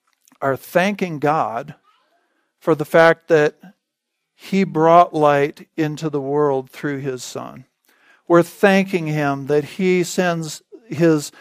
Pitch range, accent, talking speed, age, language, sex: 145-190 Hz, American, 120 wpm, 50-69, English, male